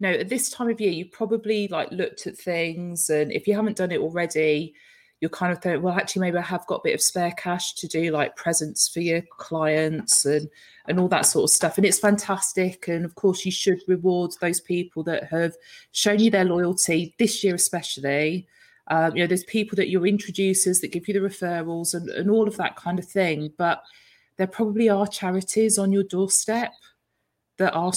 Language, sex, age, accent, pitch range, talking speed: English, female, 20-39, British, 170-205 Hz, 210 wpm